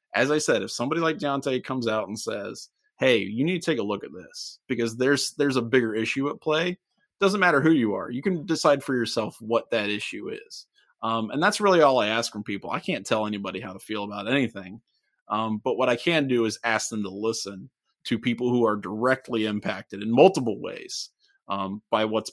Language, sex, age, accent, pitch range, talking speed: English, male, 30-49, American, 110-155 Hz, 225 wpm